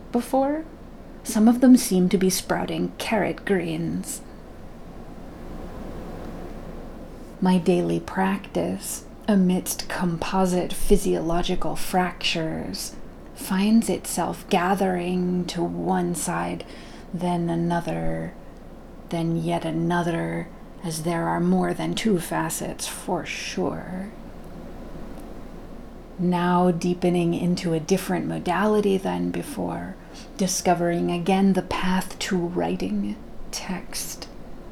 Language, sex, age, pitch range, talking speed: English, female, 30-49, 170-190 Hz, 90 wpm